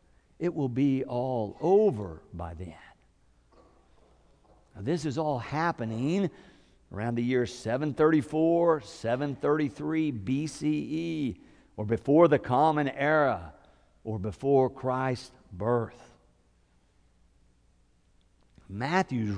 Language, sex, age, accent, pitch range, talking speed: English, male, 50-69, American, 110-155 Hz, 85 wpm